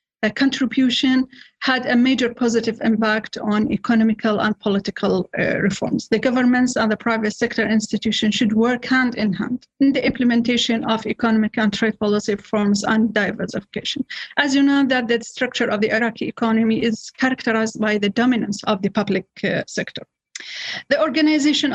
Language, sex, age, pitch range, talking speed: English, female, 40-59, 220-250 Hz, 160 wpm